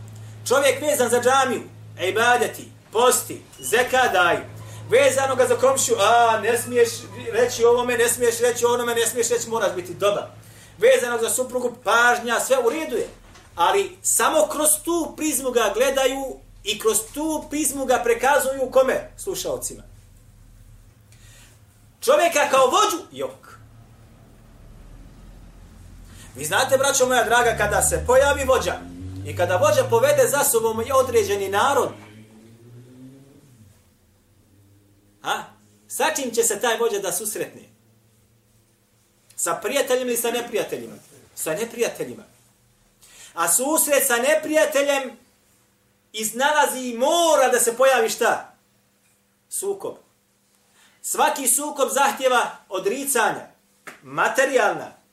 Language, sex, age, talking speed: English, male, 30-49, 115 wpm